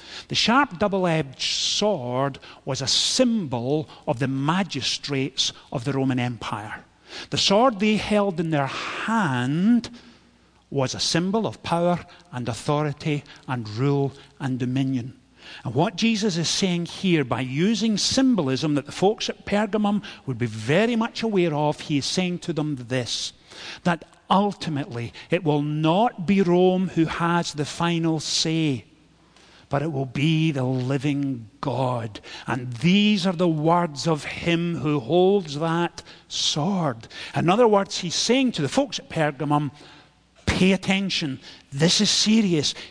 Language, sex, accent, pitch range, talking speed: English, male, British, 135-180 Hz, 145 wpm